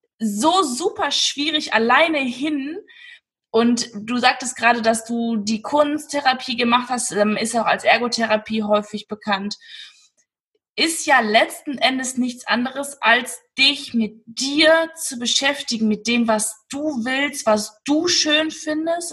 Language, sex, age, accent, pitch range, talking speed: German, female, 20-39, German, 215-265 Hz, 130 wpm